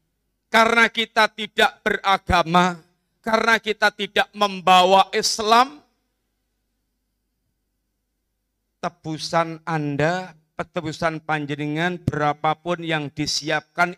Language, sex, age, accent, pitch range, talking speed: Indonesian, male, 40-59, native, 155-190 Hz, 70 wpm